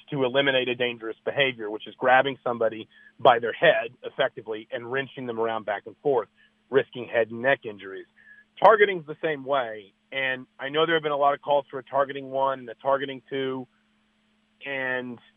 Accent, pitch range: American, 130-155 Hz